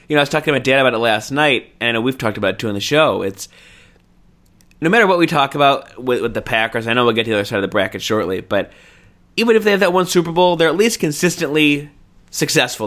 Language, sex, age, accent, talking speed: English, male, 20-39, American, 270 wpm